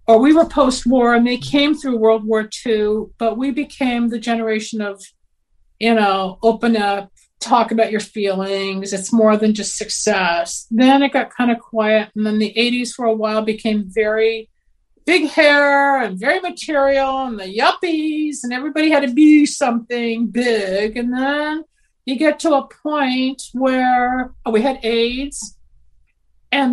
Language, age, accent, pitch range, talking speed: English, 50-69, American, 215-265 Hz, 160 wpm